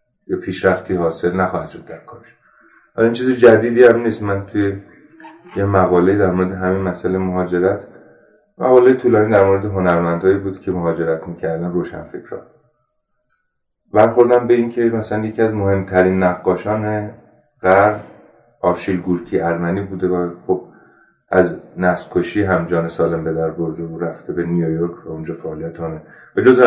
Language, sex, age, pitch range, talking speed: Persian, male, 30-49, 85-110 Hz, 145 wpm